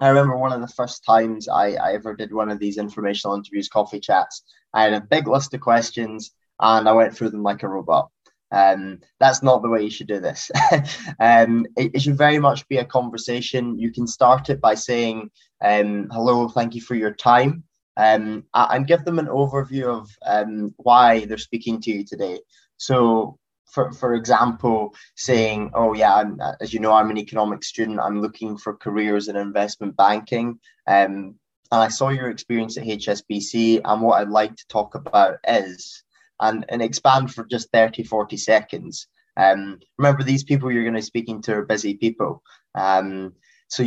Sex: male